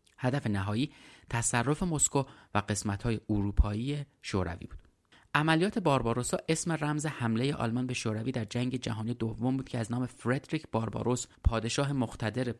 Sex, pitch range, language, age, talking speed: male, 105-130 Hz, Persian, 30-49, 140 wpm